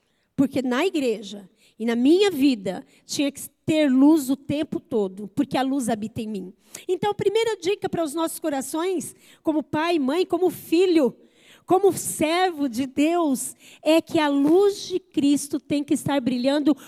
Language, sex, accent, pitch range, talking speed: Portuguese, female, Brazilian, 280-380 Hz, 165 wpm